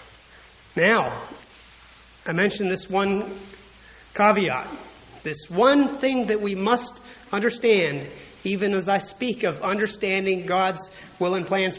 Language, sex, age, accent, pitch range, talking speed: English, male, 40-59, American, 180-230 Hz, 115 wpm